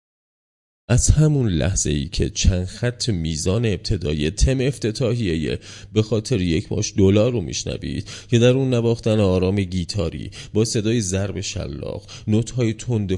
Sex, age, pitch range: male, 30-49, 95-120 Hz